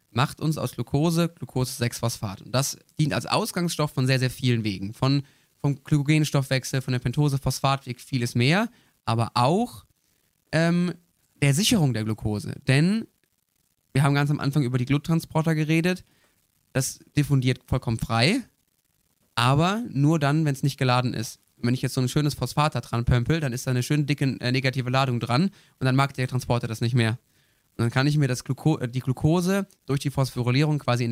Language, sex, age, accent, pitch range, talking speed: German, male, 20-39, German, 125-150 Hz, 185 wpm